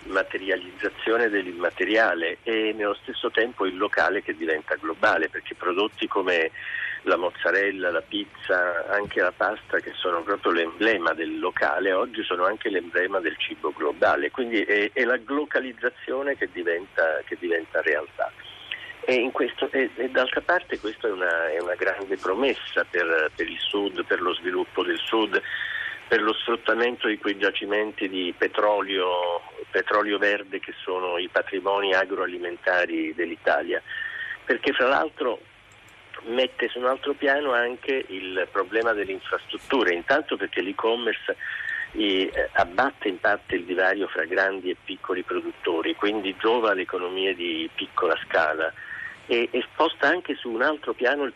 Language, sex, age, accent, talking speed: Italian, male, 50-69, native, 145 wpm